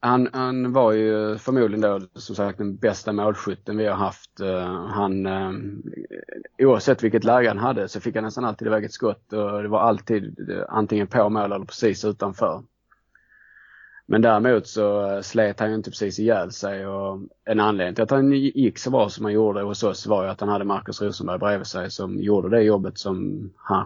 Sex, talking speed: male, 190 wpm